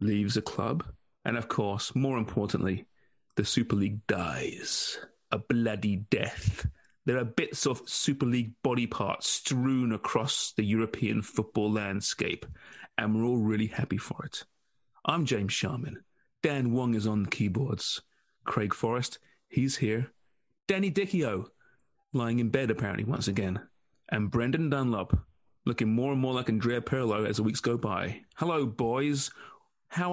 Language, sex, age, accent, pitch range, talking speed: English, male, 30-49, British, 110-140 Hz, 150 wpm